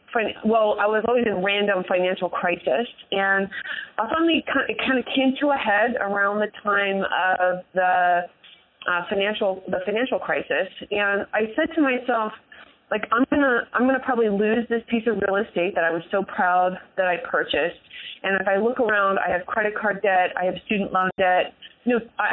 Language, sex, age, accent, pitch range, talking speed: English, female, 30-49, American, 185-245 Hz, 190 wpm